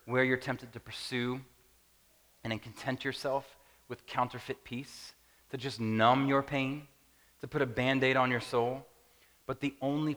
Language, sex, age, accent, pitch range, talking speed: English, male, 30-49, American, 115-155 Hz, 155 wpm